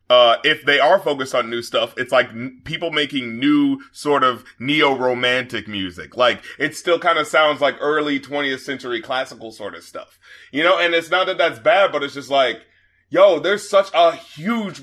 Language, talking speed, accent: English, 195 wpm, American